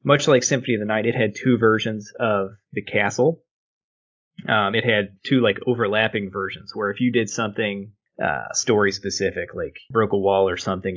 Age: 20-39